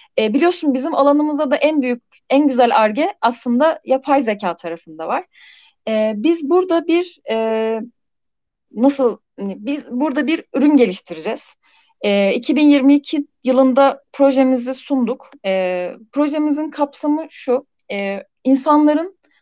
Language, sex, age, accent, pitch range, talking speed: Turkish, female, 30-49, native, 215-295 Hz, 115 wpm